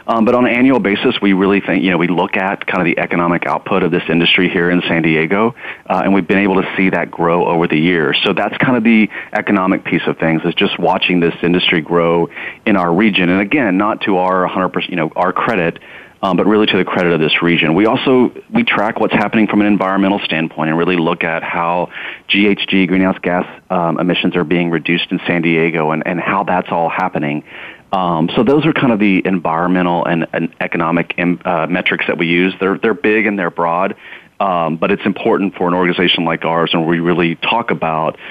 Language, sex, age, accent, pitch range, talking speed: English, male, 30-49, American, 85-95 Hz, 225 wpm